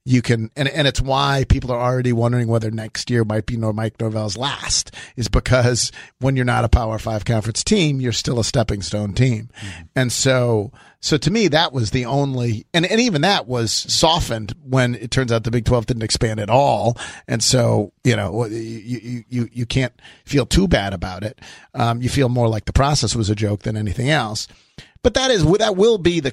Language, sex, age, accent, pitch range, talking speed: English, male, 40-59, American, 110-130 Hz, 210 wpm